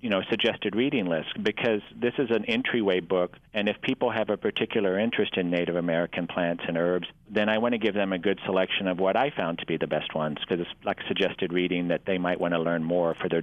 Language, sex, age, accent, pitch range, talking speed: English, male, 40-59, American, 90-105 Hz, 250 wpm